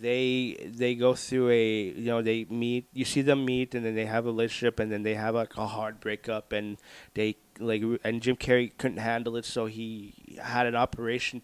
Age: 20-39